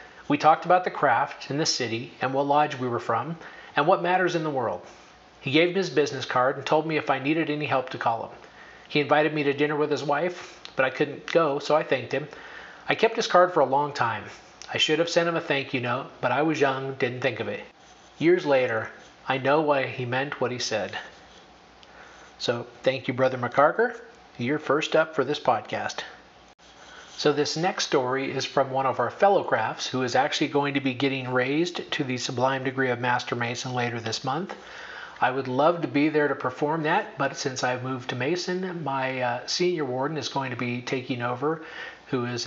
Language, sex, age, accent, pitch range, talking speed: English, male, 40-59, American, 130-160 Hz, 220 wpm